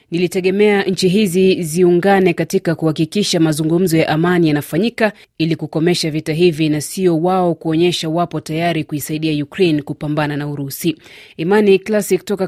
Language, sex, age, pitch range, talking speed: Swahili, female, 30-49, 155-185 Hz, 135 wpm